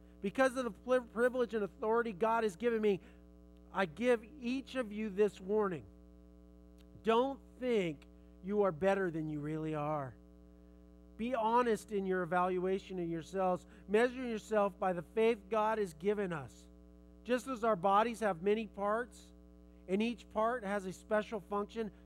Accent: American